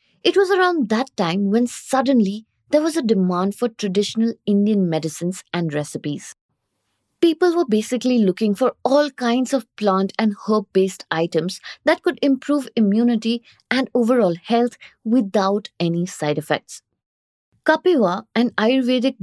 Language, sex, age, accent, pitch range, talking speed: English, female, 20-39, Indian, 180-255 Hz, 135 wpm